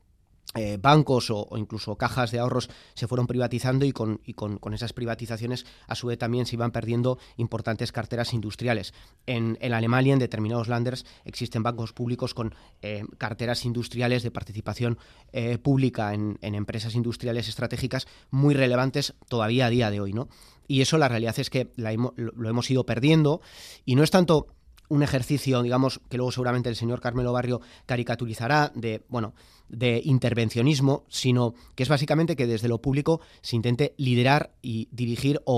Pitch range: 110-130 Hz